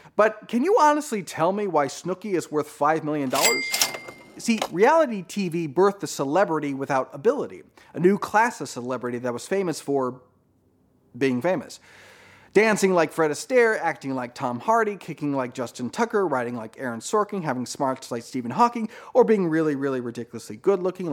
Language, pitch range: English, 140-230 Hz